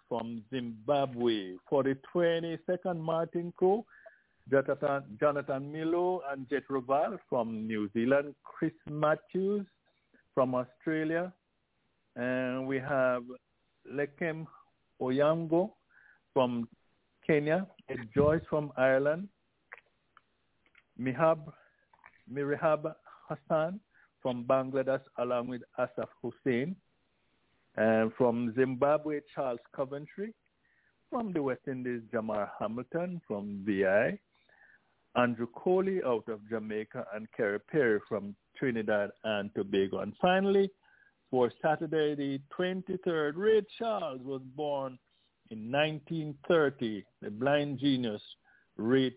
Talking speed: 100 wpm